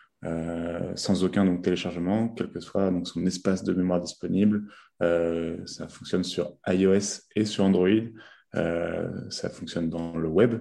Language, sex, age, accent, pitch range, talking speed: French, male, 20-39, French, 85-95 Hz, 160 wpm